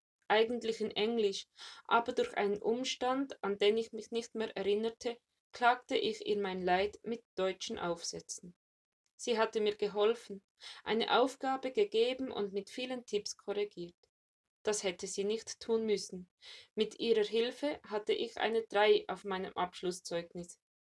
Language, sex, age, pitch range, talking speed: German, female, 20-39, 195-240 Hz, 145 wpm